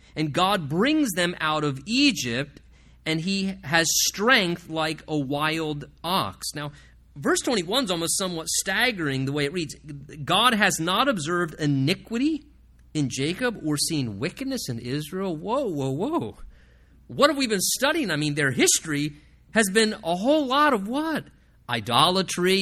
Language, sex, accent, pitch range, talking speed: English, male, American, 145-200 Hz, 155 wpm